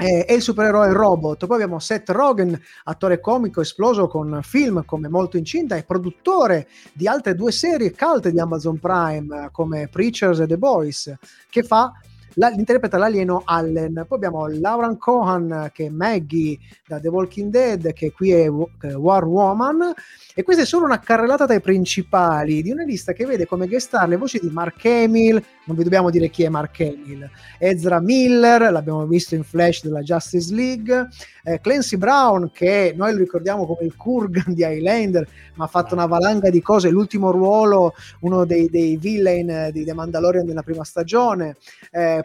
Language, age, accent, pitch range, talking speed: Italian, 30-49, native, 165-220 Hz, 175 wpm